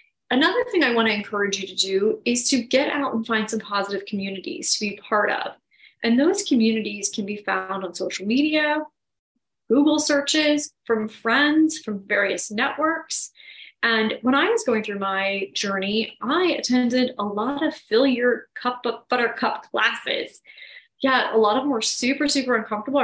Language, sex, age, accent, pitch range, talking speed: English, female, 20-39, American, 210-270 Hz, 170 wpm